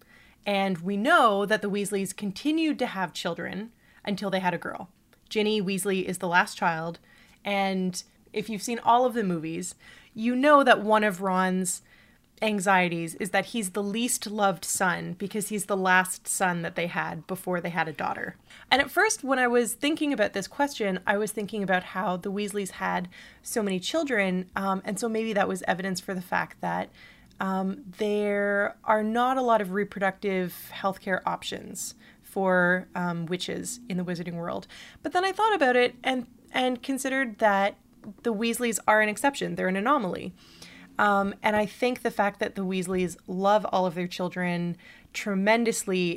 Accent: American